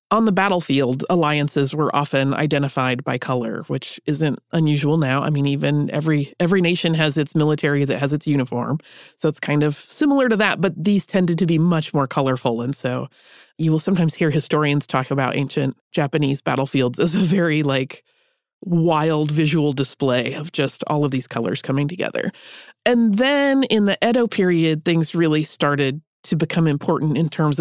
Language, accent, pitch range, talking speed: English, American, 145-190 Hz, 180 wpm